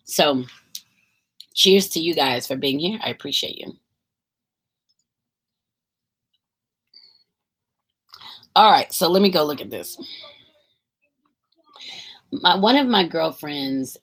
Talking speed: 105 wpm